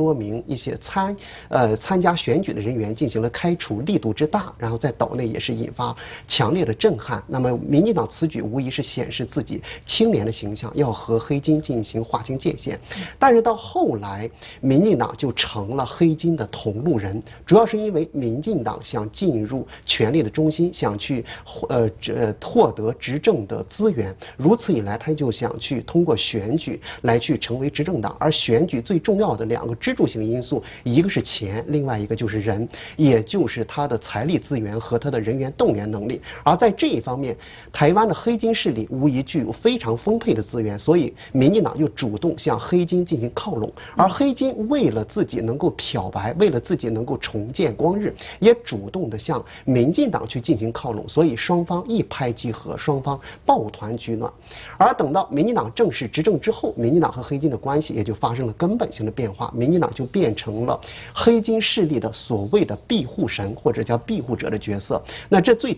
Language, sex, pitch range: Chinese, male, 115-160 Hz